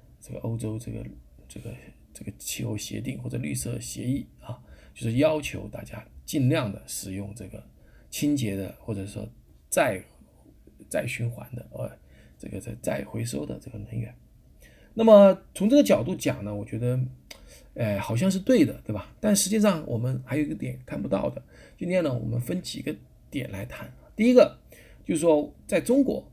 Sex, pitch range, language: male, 105-160 Hz, Chinese